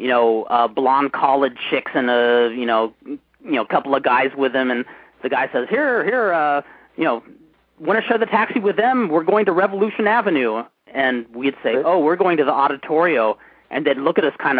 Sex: male